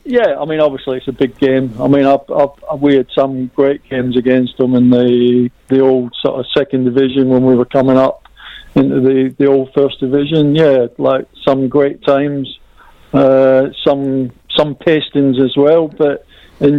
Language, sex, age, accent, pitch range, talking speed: English, male, 50-69, British, 130-145 Hz, 180 wpm